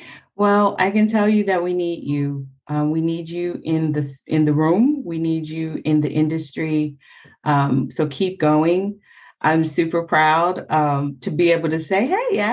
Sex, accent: female, American